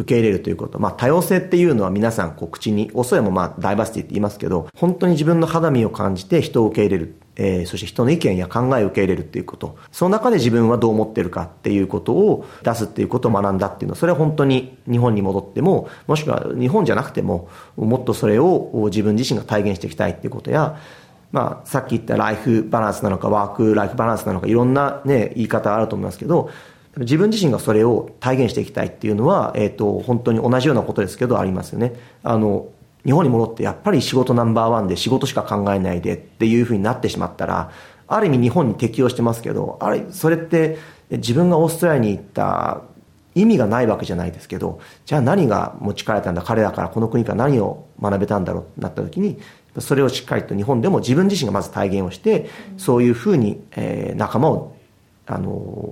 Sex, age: male, 40-59